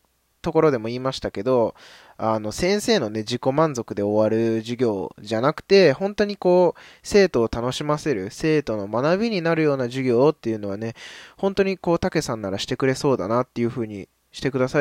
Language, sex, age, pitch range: Japanese, male, 20-39, 100-140 Hz